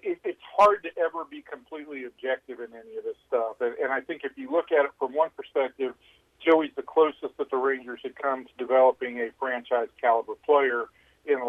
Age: 50-69